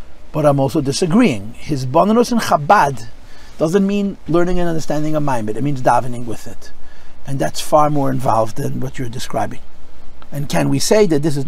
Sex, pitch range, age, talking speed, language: male, 135-190 Hz, 50-69, 195 wpm, English